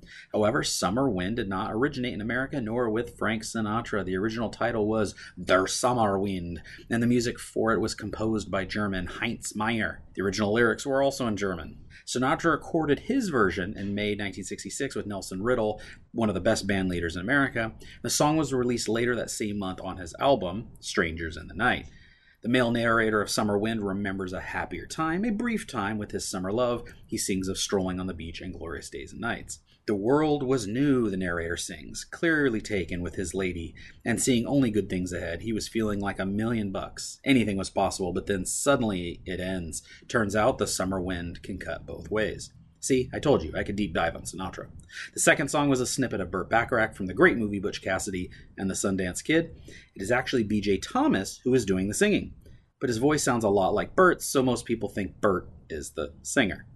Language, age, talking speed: English, 30-49, 205 wpm